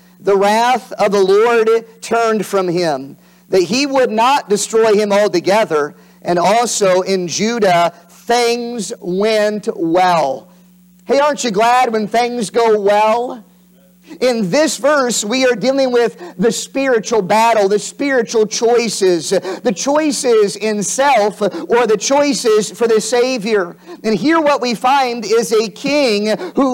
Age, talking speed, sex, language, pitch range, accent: 50-69, 140 wpm, male, English, 195-240 Hz, American